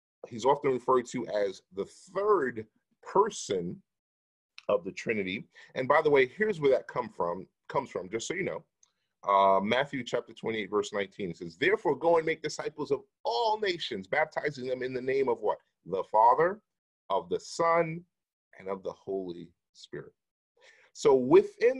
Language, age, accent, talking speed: English, 30-49, American, 165 wpm